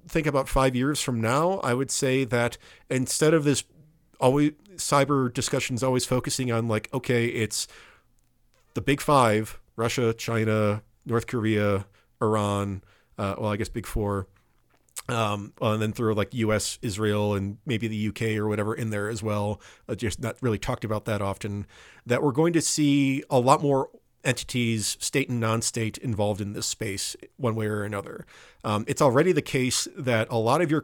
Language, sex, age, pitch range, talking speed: Ukrainian, male, 40-59, 110-135 Hz, 175 wpm